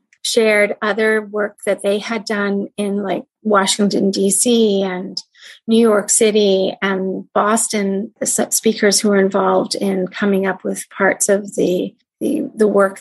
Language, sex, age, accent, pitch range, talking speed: English, female, 30-49, American, 190-215 Hz, 150 wpm